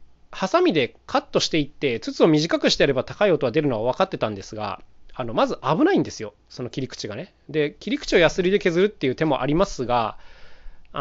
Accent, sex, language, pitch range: native, male, Japanese, 120-200 Hz